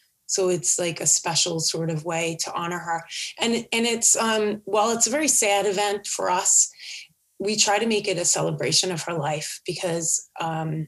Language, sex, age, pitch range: English, female, 30-49, 180-210 Hz